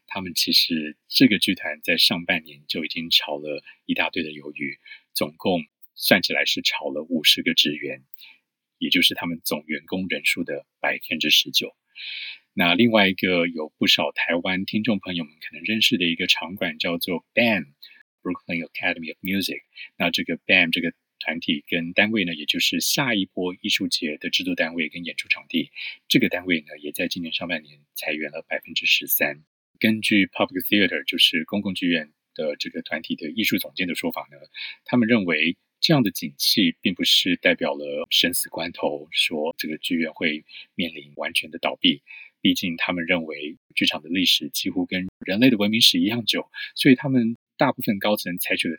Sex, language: male, Chinese